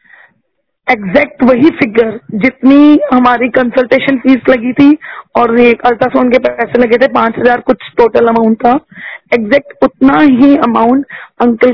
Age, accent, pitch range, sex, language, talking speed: 20-39, native, 245-285 Hz, female, Hindi, 140 wpm